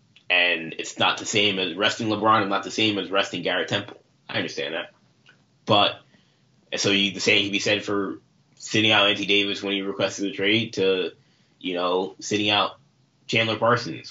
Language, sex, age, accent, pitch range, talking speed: English, male, 20-39, American, 100-130 Hz, 185 wpm